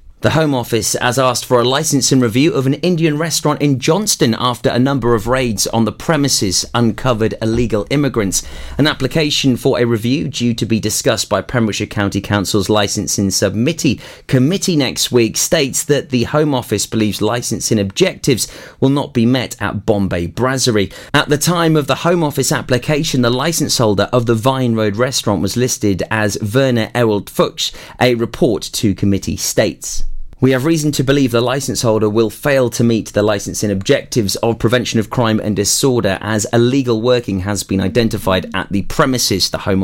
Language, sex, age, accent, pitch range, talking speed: English, male, 30-49, British, 105-135 Hz, 180 wpm